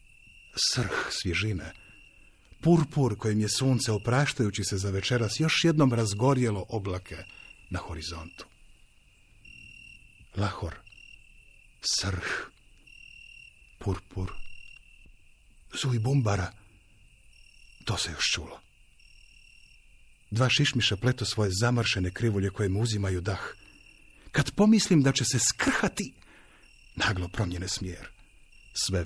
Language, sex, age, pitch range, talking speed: Croatian, male, 50-69, 90-115 Hz, 95 wpm